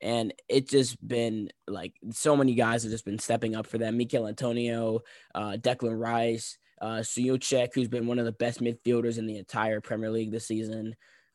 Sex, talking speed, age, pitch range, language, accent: male, 190 wpm, 10-29, 110-125 Hz, English, American